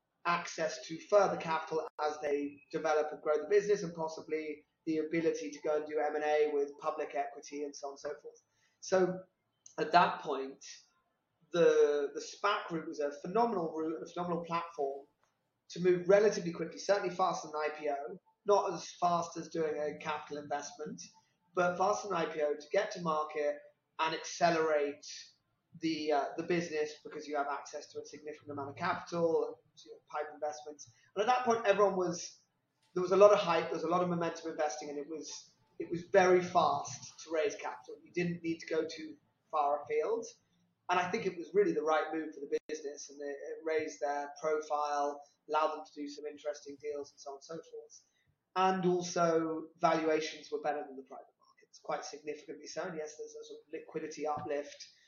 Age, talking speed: 30-49, 190 wpm